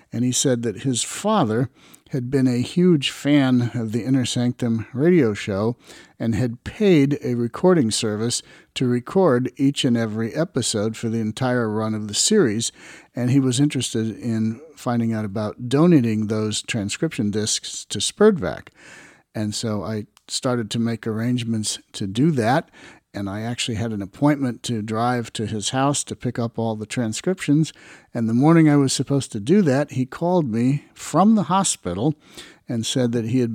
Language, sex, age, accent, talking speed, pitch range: English, male, 50-69, American, 175 wpm, 115-145 Hz